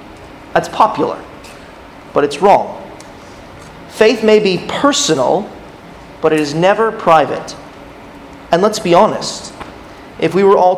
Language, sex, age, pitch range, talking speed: English, male, 30-49, 155-205 Hz, 120 wpm